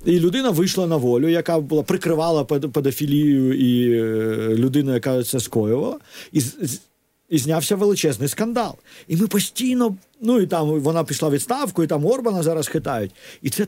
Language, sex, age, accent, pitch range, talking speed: Ukrainian, male, 50-69, native, 140-210 Hz, 155 wpm